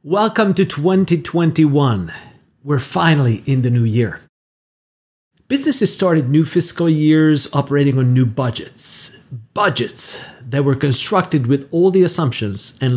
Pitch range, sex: 115-155 Hz, male